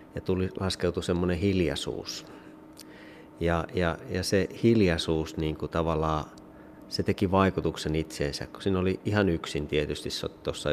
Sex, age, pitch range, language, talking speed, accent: male, 30-49, 75-90 Hz, Finnish, 130 wpm, native